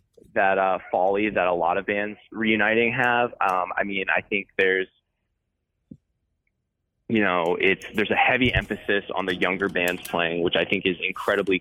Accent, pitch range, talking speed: American, 95-120 Hz, 170 wpm